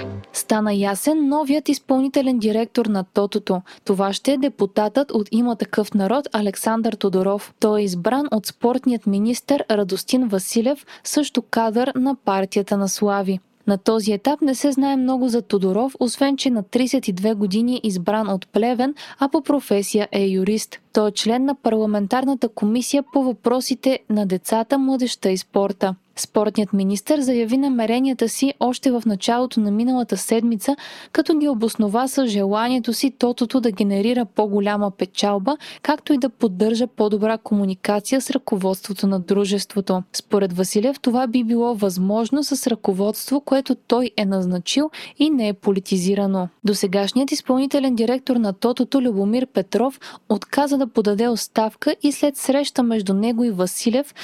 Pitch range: 205-265 Hz